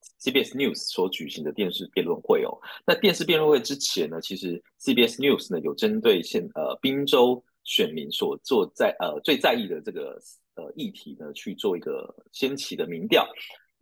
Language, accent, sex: Chinese, native, male